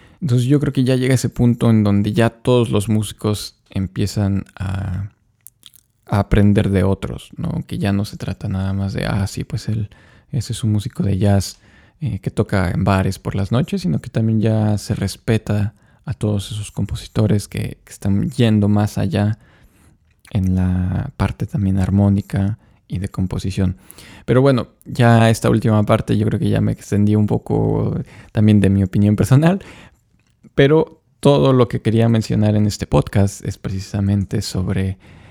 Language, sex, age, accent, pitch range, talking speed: Spanish, male, 20-39, Mexican, 100-115 Hz, 175 wpm